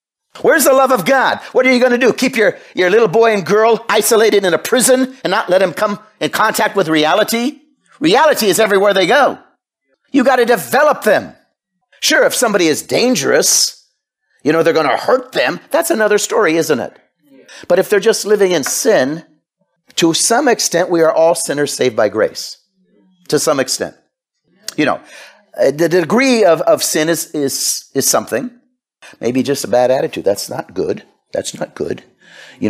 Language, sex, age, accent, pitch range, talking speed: English, male, 50-69, American, 155-250 Hz, 185 wpm